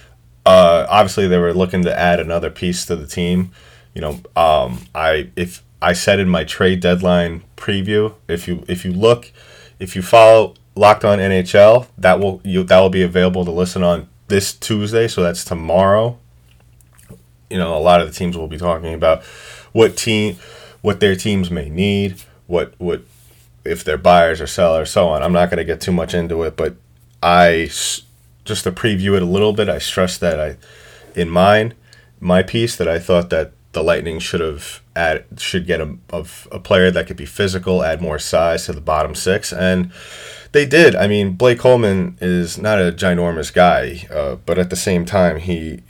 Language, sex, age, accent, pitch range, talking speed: English, male, 30-49, American, 85-100 Hz, 195 wpm